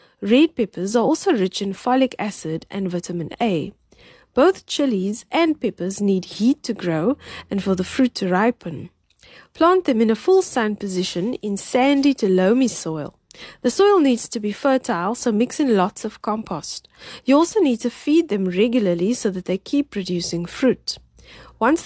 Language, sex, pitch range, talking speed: English, female, 185-255 Hz, 175 wpm